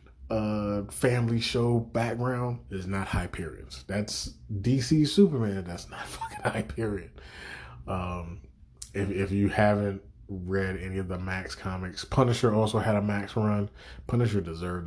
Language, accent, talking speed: English, American, 130 wpm